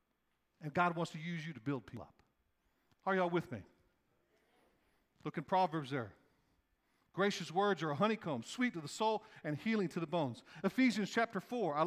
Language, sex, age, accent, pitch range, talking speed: English, male, 50-69, American, 155-220 Hz, 185 wpm